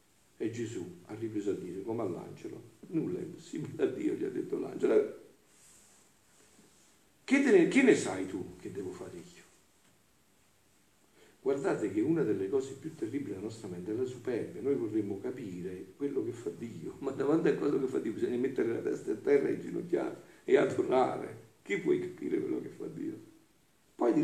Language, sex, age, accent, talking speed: Italian, male, 50-69, native, 185 wpm